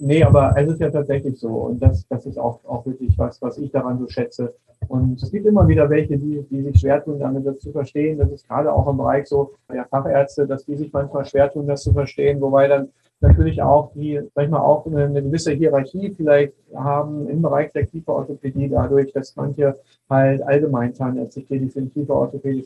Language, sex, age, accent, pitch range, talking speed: German, male, 40-59, German, 135-150 Hz, 215 wpm